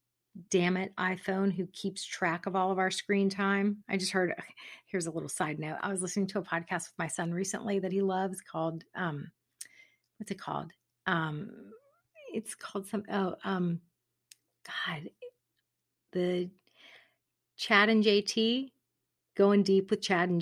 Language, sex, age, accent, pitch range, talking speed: English, female, 40-59, American, 175-205 Hz, 160 wpm